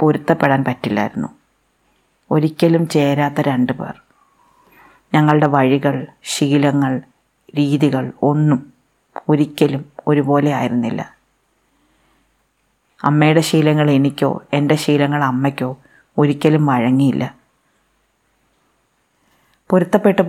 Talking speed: 70 wpm